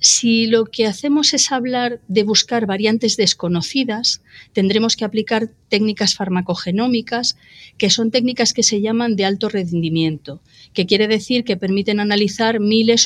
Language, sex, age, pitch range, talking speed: Spanish, female, 40-59, 185-230 Hz, 145 wpm